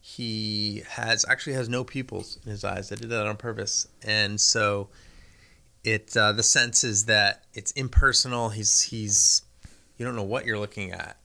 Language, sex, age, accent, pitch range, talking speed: English, male, 30-49, American, 100-120 Hz, 175 wpm